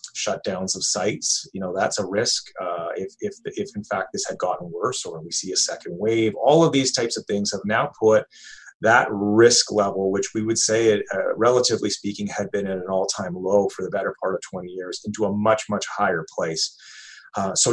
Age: 30-49